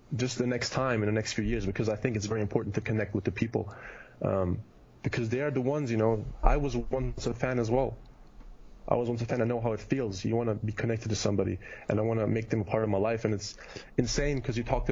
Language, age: English, 20-39